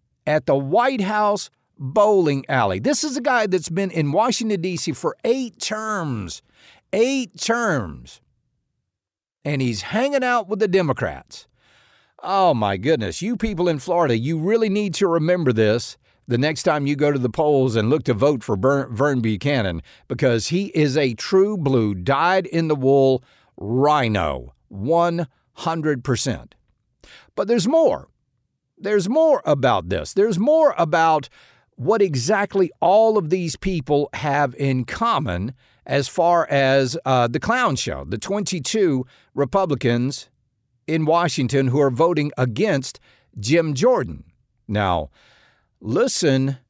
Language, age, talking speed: English, 50-69, 135 wpm